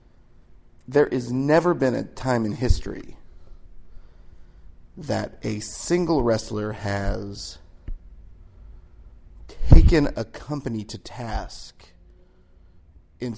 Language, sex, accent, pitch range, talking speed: English, male, American, 90-135 Hz, 85 wpm